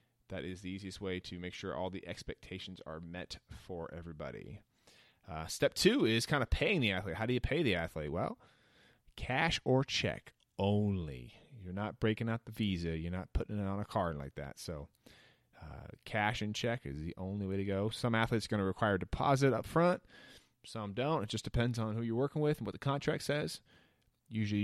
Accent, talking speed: American, 210 wpm